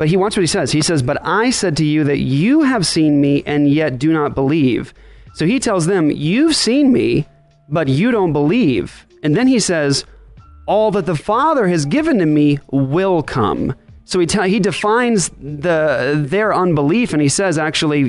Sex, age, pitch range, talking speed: male, 30-49, 140-175 Hz, 200 wpm